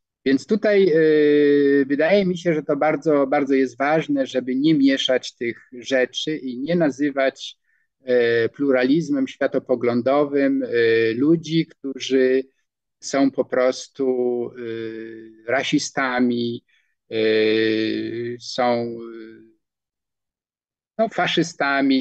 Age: 50-69